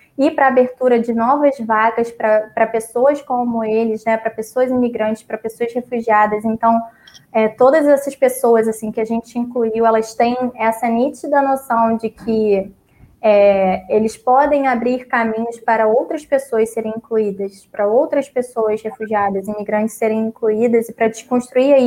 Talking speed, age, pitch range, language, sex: 145 wpm, 20-39, 220-255 Hz, Portuguese, female